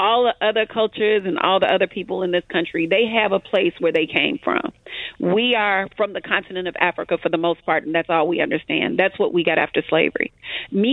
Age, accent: 40-59, American